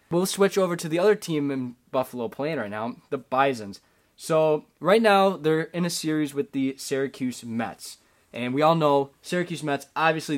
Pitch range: 130-180 Hz